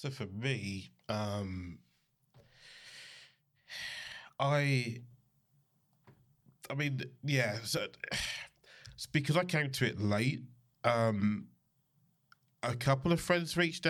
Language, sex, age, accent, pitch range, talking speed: English, male, 20-39, British, 110-140 Hz, 95 wpm